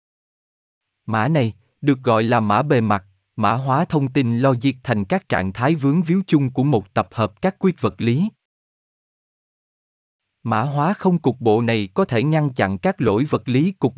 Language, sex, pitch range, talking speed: Vietnamese, male, 110-155 Hz, 190 wpm